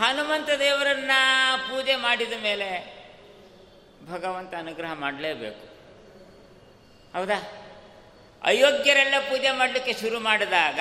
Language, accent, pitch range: Kannada, native, 170-245 Hz